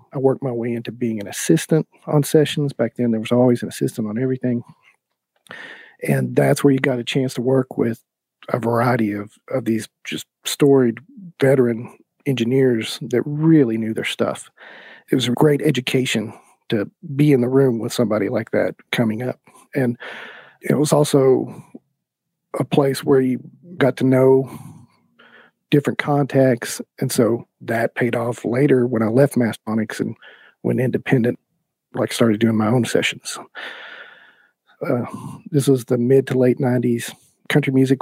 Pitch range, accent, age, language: 115-135 Hz, American, 40-59, English